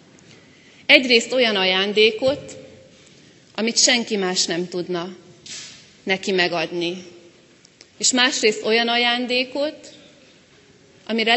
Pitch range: 190-245 Hz